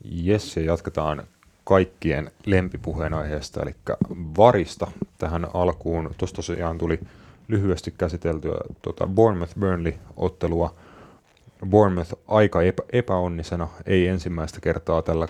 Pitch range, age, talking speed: 85-95 Hz, 30-49, 100 wpm